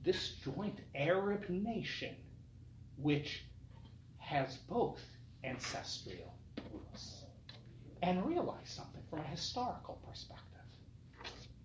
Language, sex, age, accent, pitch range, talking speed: English, male, 40-59, American, 120-185 Hz, 80 wpm